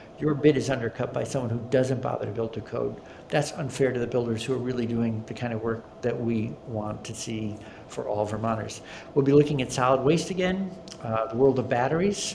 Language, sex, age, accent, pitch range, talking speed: English, male, 60-79, American, 115-145 Hz, 225 wpm